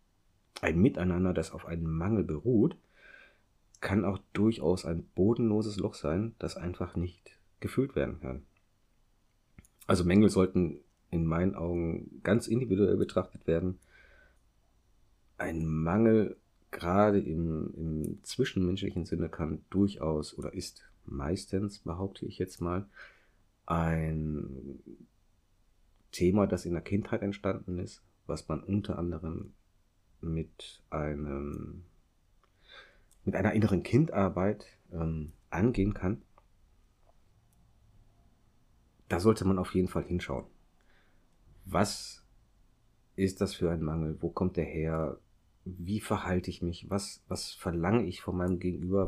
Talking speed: 115 wpm